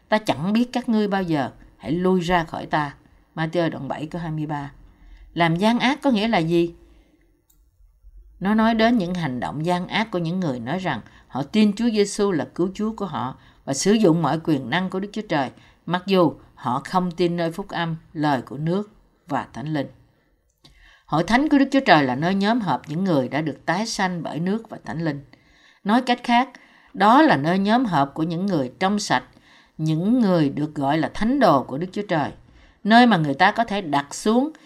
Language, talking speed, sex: Vietnamese, 210 wpm, female